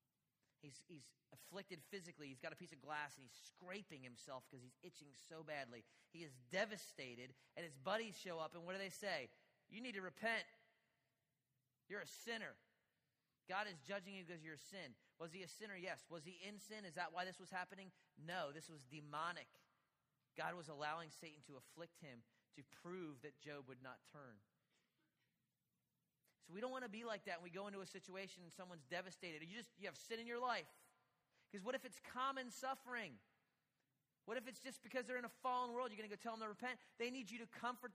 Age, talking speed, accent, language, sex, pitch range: 30-49, 215 wpm, American, English, male, 155-230 Hz